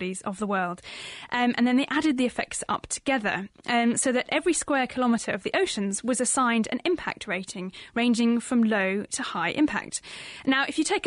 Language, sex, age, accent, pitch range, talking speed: English, female, 10-29, British, 210-265 Hz, 200 wpm